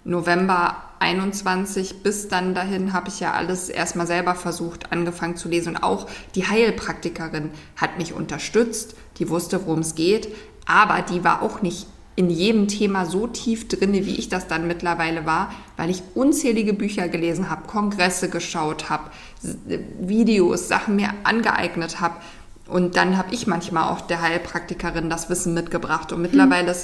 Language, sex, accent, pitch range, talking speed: German, female, German, 170-195 Hz, 160 wpm